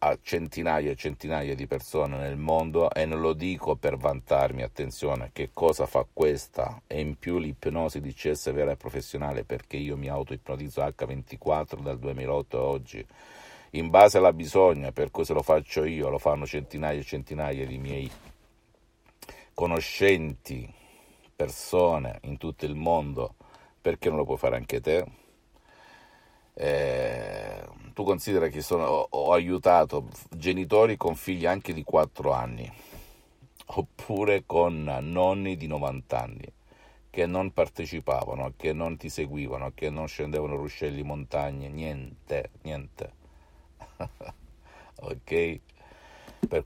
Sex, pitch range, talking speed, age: male, 70-90 Hz, 130 wpm, 50-69